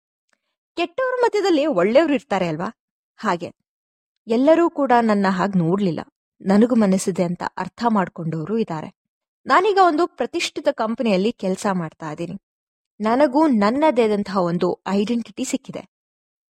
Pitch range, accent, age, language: 185-250 Hz, native, 20-39, Kannada